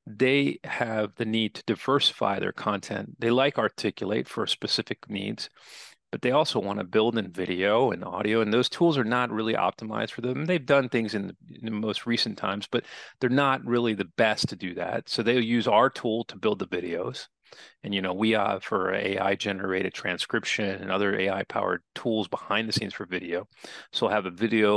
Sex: male